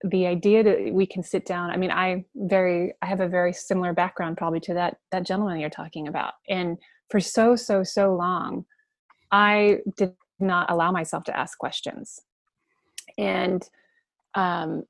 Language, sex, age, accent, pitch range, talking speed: English, female, 20-39, American, 180-205 Hz, 165 wpm